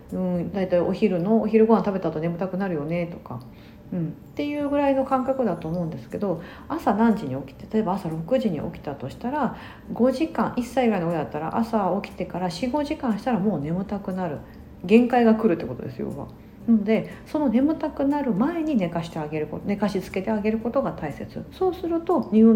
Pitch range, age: 175-245 Hz, 40-59